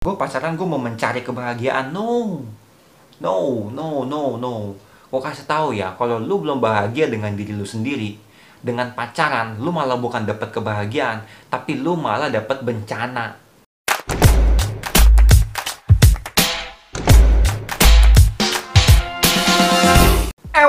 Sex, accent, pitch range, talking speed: male, native, 105-135 Hz, 105 wpm